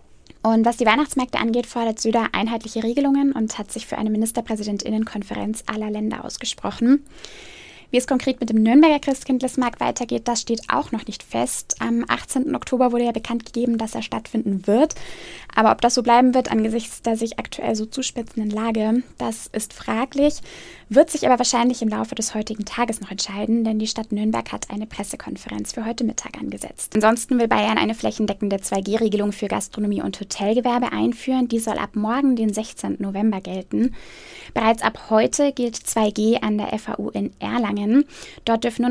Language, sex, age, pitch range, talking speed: German, female, 10-29, 210-245 Hz, 175 wpm